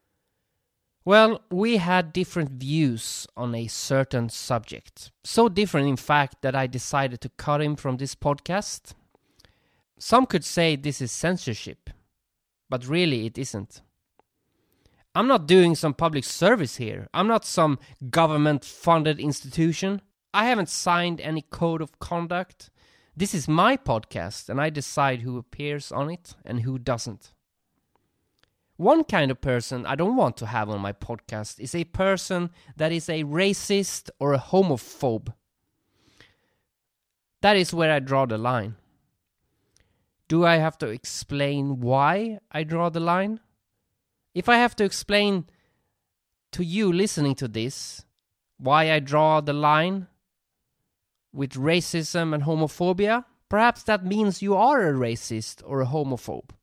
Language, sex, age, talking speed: English, male, 20-39, 140 wpm